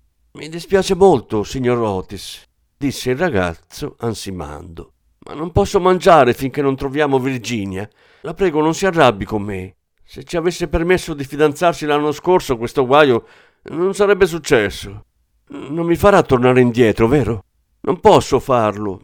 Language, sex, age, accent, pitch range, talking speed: Italian, male, 50-69, native, 95-155 Hz, 145 wpm